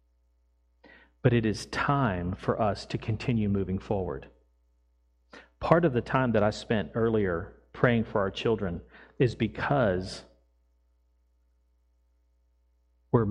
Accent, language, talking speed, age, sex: American, English, 115 wpm, 40-59, male